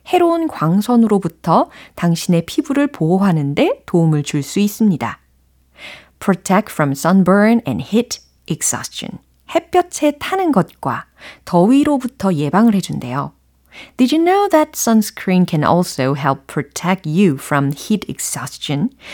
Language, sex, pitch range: Korean, female, 160-240 Hz